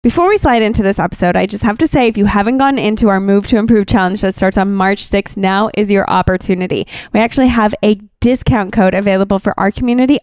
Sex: female